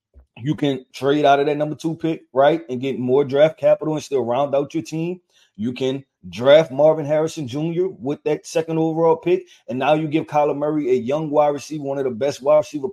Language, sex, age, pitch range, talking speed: English, male, 30-49, 140-180 Hz, 225 wpm